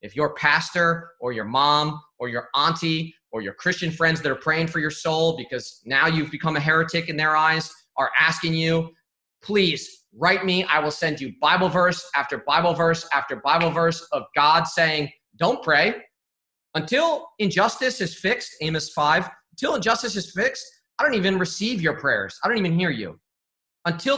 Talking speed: 180 wpm